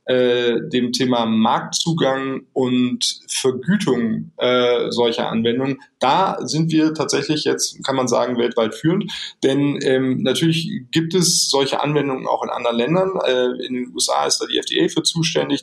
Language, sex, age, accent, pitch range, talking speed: German, male, 20-39, German, 130-165 Hz, 150 wpm